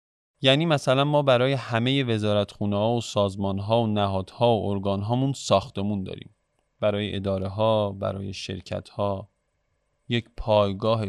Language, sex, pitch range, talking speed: Persian, male, 100-130 Hz, 130 wpm